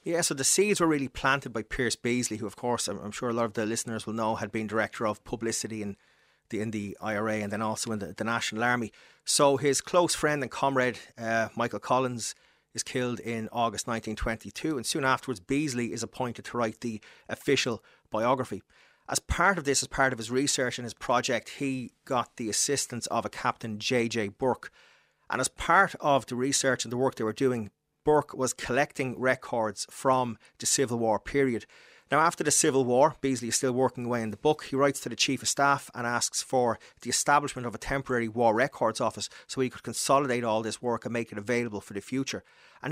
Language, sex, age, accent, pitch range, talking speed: English, male, 30-49, Irish, 110-130 Hz, 215 wpm